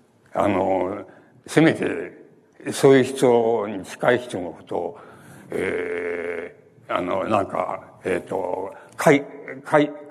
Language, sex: Japanese, male